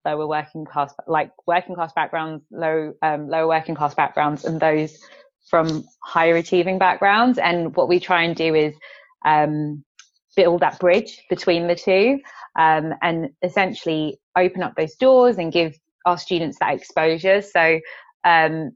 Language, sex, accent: English, female, British